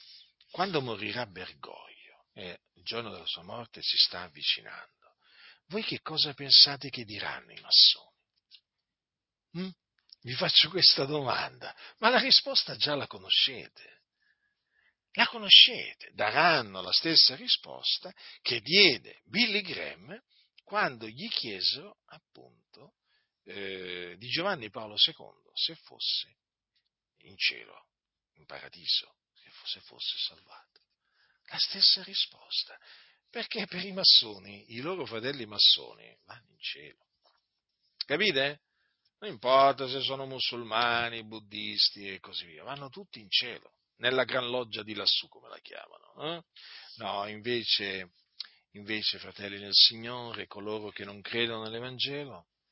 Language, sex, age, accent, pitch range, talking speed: Italian, male, 50-69, native, 105-155 Hz, 120 wpm